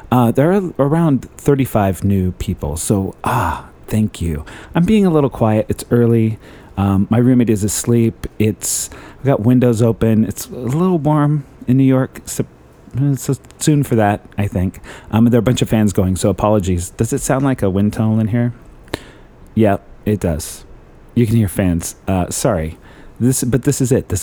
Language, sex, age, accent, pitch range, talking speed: English, male, 30-49, American, 95-125 Hz, 190 wpm